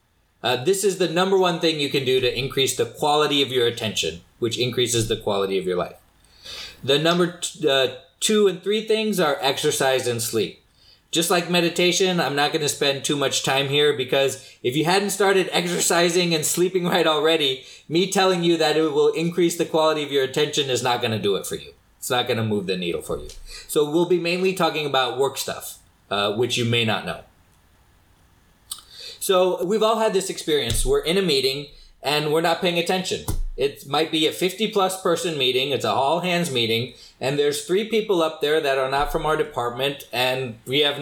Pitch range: 125-175 Hz